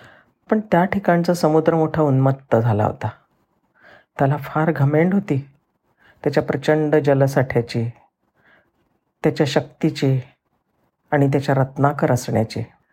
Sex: female